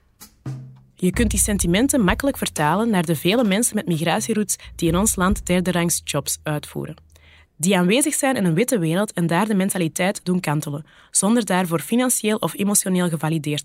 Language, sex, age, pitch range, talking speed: Dutch, female, 20-39, 150-195 Hz, 165 wpm